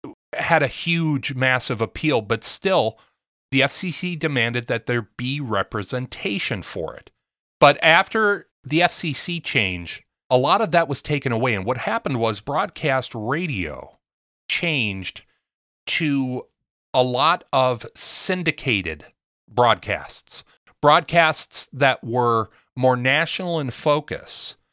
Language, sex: English, male